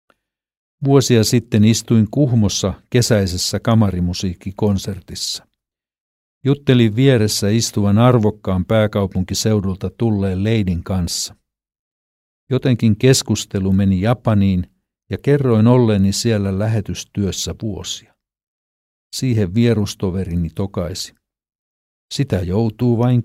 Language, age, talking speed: Finnish, 60-79, 75 wpm